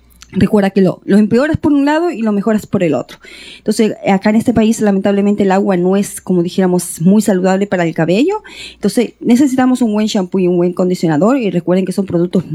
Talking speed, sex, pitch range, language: 215 wpm, female, 180-245 Hz, English